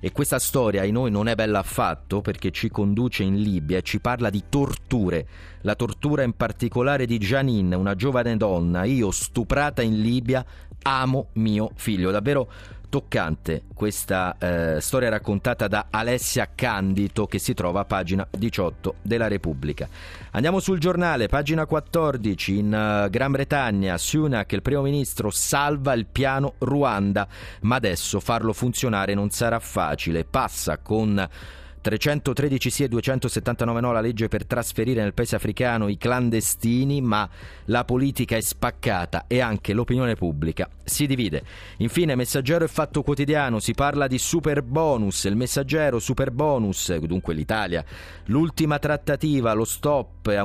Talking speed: 145 wpm